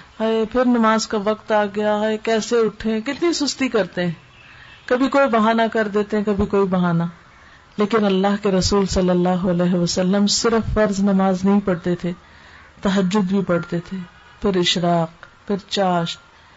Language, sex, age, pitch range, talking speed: Urdu, female, 50-69, 180-225 Hz, 165 wpm